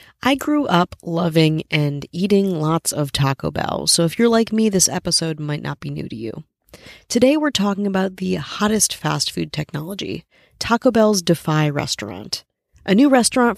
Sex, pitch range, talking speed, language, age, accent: female, 155-205 Hz, 170 wpm, English, 30-49, American